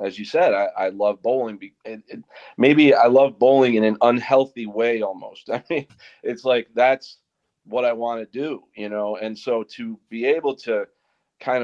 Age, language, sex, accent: 40-59, English, male, American